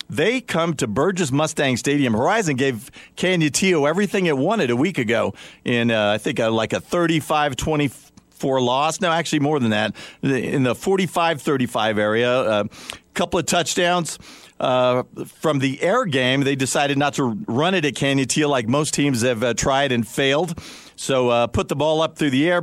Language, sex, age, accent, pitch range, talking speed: English, male, 50-69, American, 130-170 Hz, 185 wpm